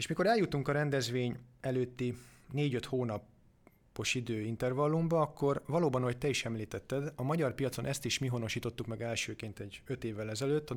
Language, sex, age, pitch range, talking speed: Hungarian, male, 30-49, 110-135 Hz, 160 wpm